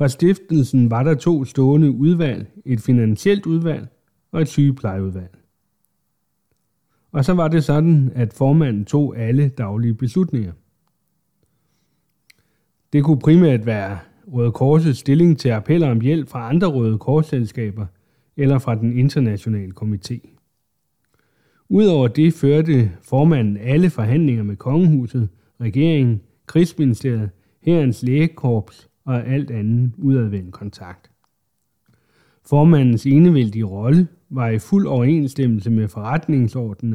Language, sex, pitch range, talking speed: Danish, male, 115-150 Hz, 115 wpm